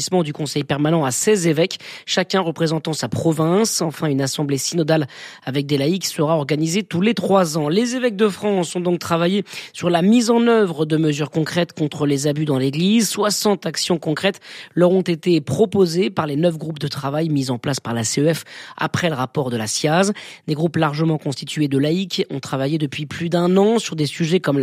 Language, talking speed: French, 205 wpm